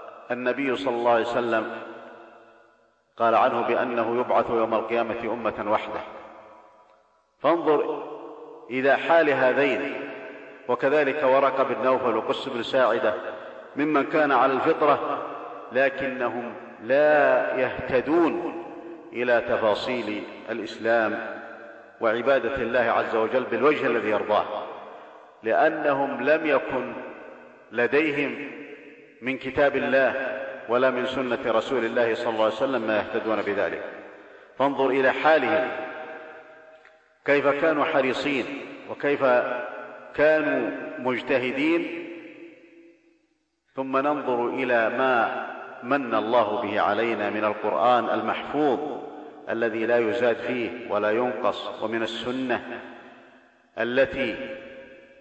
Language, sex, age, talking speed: Arabic, male, 50-69, 95 wpm